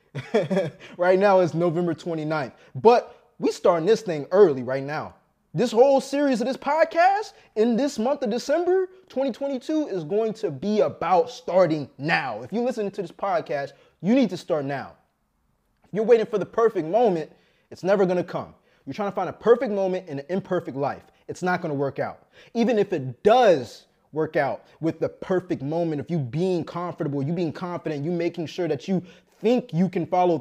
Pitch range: 155-220 Hz